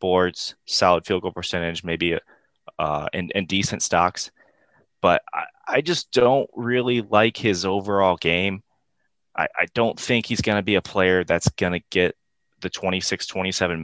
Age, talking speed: 20-39, 150 wpm